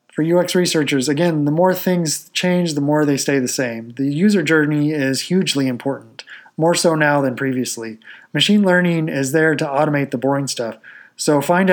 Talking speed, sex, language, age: 185 wpm, male, English, 20-39